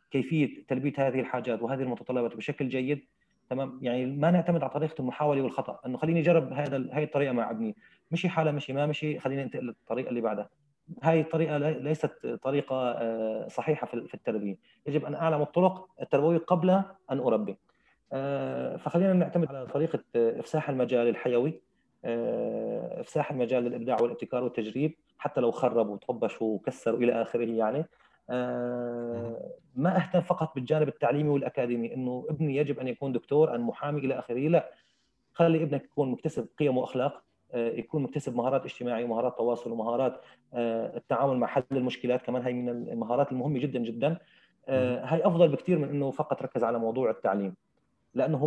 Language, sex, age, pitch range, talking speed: Arabic, male, 30-49, 120-155 Hz, 150 wpm